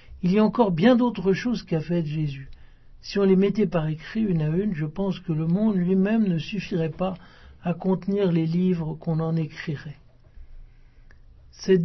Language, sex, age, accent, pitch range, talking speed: French, male, 60-79, French, 165-200 Hz, 180 wpm